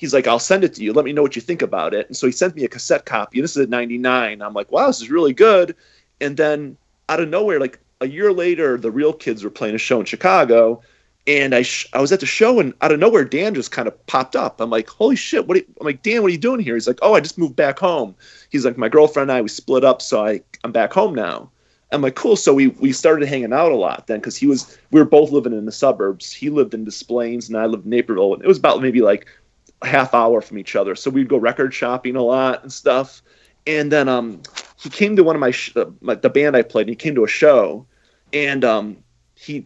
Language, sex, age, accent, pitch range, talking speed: English, male, 30-49, American, 120-175 Hz, 280 wpm